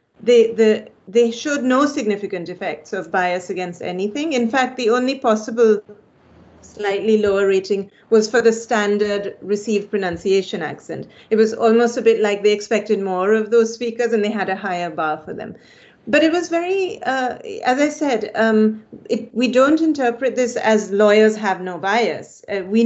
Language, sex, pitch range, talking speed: English, female, 200-245 Hz, 170 wpm